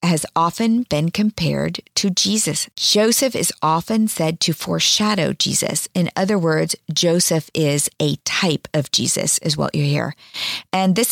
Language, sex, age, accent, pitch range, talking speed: English, female, 40-59, American, 165-210 Hz, 150 wpm